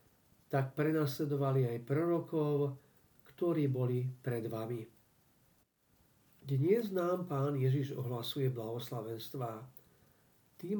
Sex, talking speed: male, 85 wpm